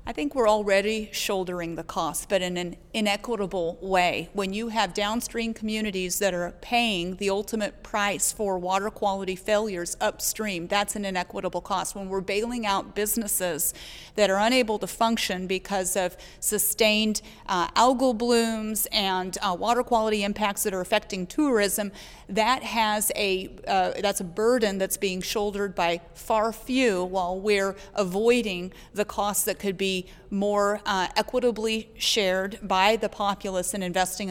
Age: 40-59